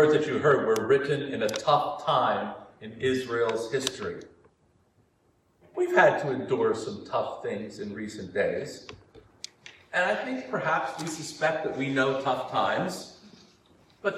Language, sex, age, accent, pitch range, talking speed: English, male, 40-59, American, 135-180 Hz, 145 wpm